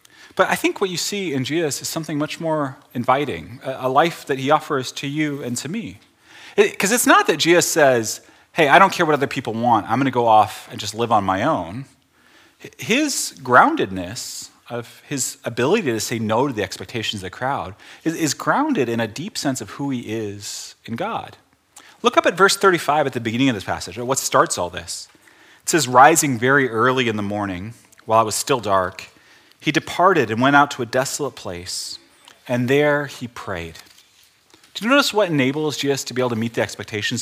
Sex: male